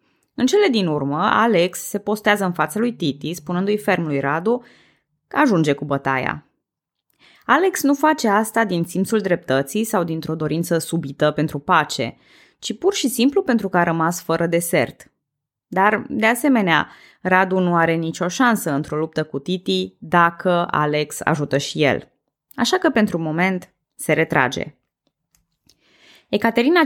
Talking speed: 145 wpm